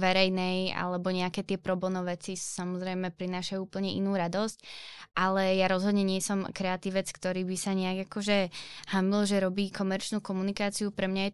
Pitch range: 185-200 Hz